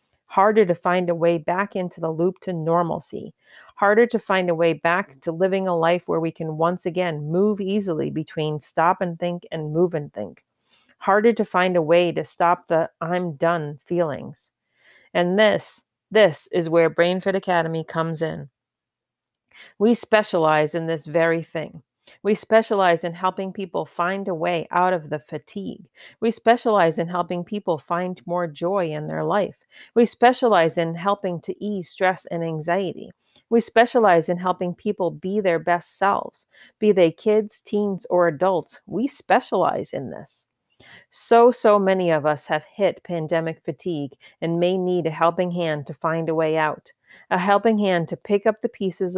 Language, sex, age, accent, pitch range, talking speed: English, female, 40-59, American, 165-195 Hz, 170 wpm